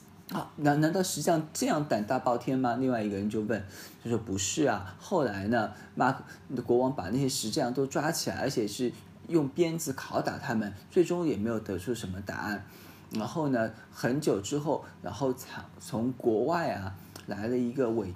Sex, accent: male, native